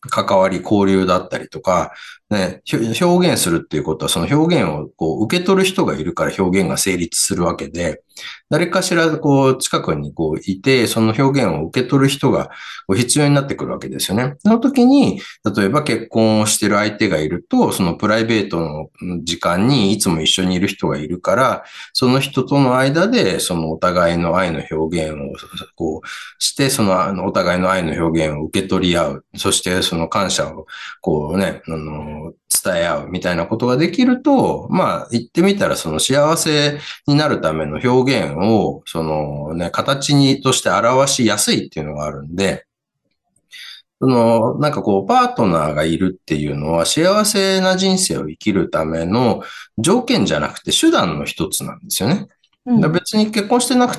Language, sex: Japanese, male